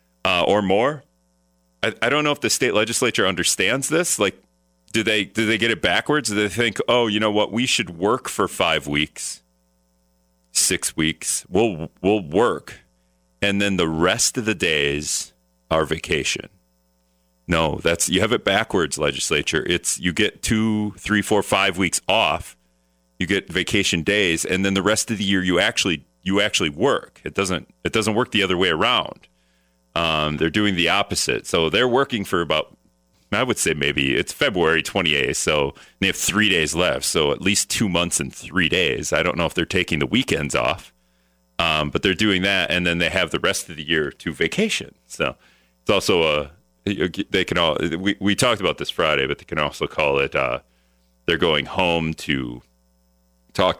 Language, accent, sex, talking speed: English, American, male, 190 wpm